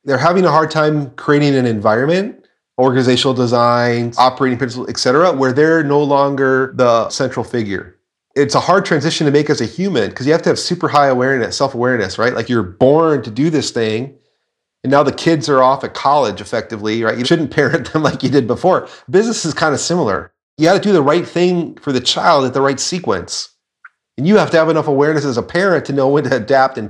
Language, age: English, 30-49